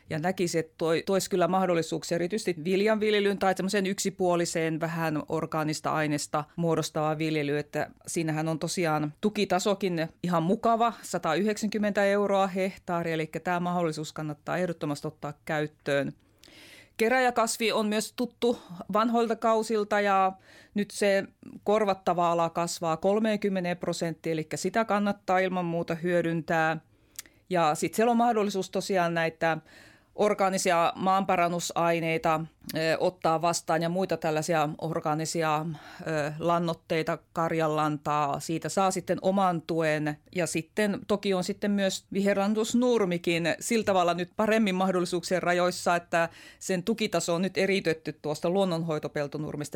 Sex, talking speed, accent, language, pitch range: female, 115 wpm, native, Finnish, 160-200 Hz